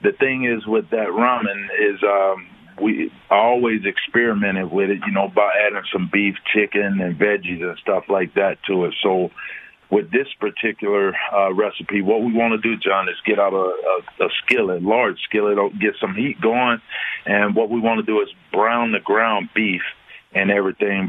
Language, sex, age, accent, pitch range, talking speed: English, male, 40-59, American, 95-110 Hz, 190 wpm